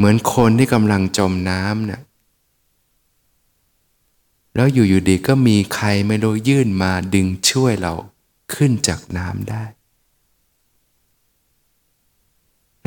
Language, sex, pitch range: Thai, male, 95-115 Hz